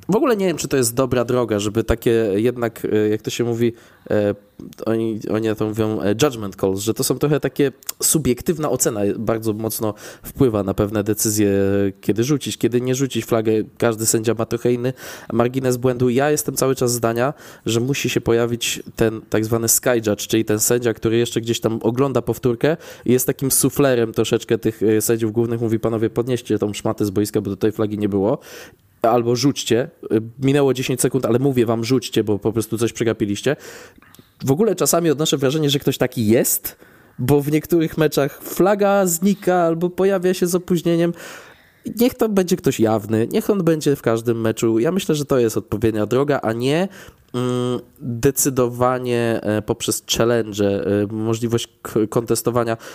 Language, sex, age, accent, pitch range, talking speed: Polish, male, 20-39, native, 110-135 Hz, 170 wpm